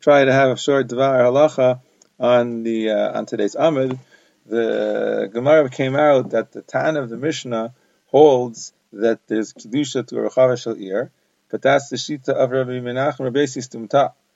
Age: 30-49